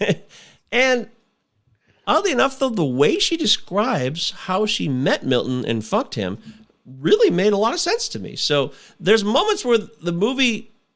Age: 40-59